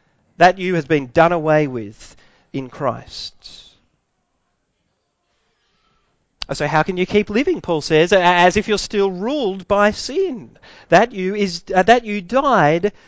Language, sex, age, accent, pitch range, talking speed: English, male, 40-59, Australian, 165-215 Hz, 140 wpm